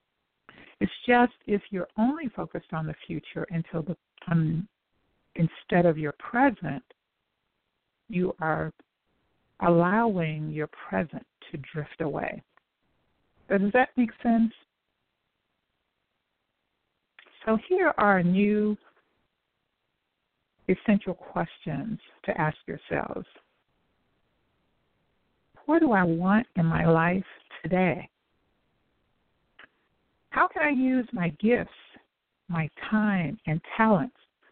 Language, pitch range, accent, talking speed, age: English, 175-245 Hz, American, 95 wpm, 60-79